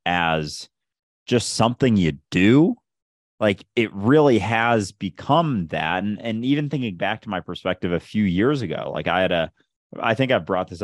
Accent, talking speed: American, 175 wpm